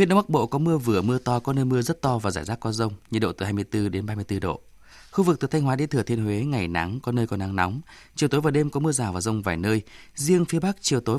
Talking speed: 310 wpm